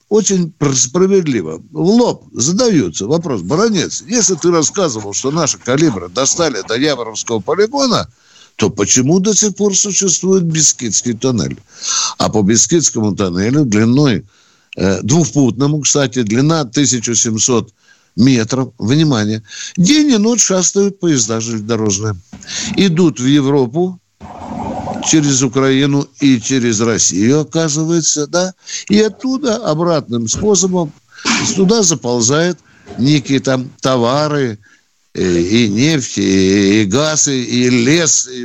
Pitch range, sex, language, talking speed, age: 120-180 Hz, male, Russian, 110 wpm, 60-79